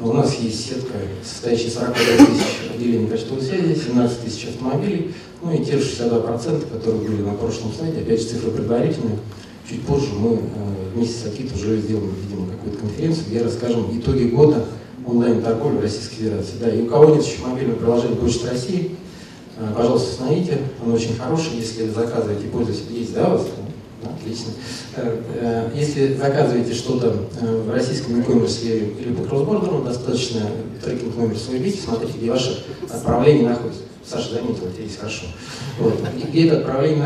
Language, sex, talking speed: Russian, male, 160 wpm